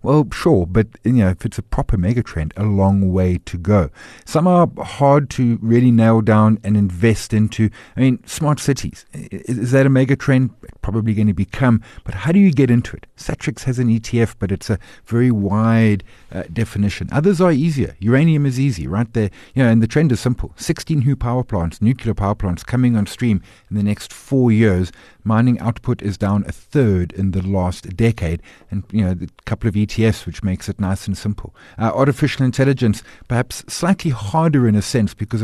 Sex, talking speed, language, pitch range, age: male, 200 wpm, English, 100-125 Hz, 50-69